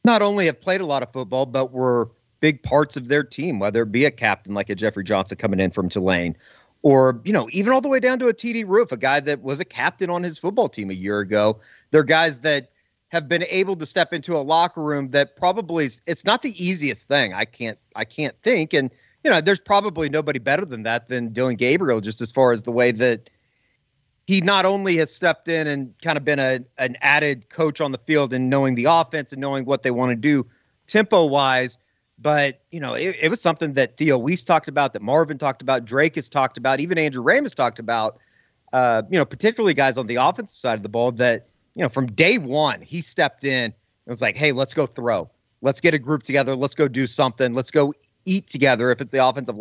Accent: American